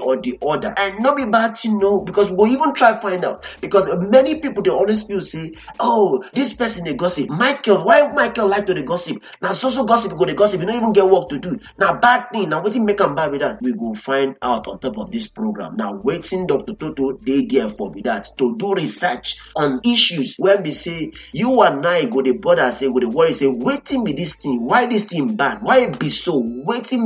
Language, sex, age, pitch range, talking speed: English, male, 30-49, 160-225 Hz, 245 wpm